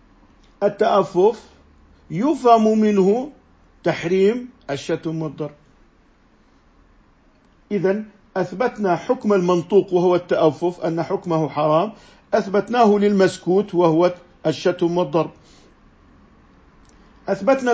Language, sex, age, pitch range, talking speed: Arabic, male, 50-69, 155-200 Hz, 70 wpm